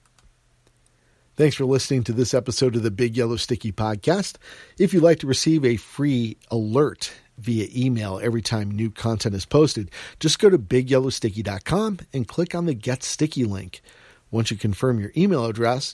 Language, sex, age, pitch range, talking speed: English, male, 50-69, 110-135 Hz, 170 wpm